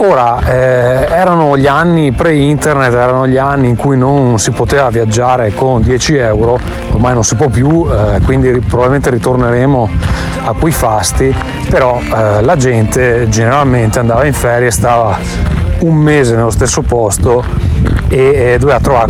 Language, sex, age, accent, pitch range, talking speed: Italian, male, 30-49, native, 110-135 Hz, 155 wpm